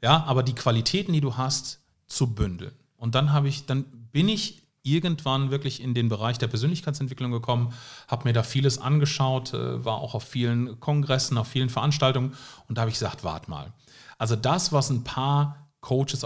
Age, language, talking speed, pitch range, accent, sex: 40-59, German, 185 wpm, 115-145 Hz, German, male